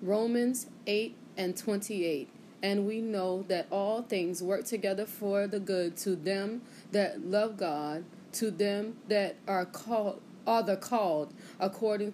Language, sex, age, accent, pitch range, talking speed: English, female, 20-39, American, 185-225 Hz, 145 wpm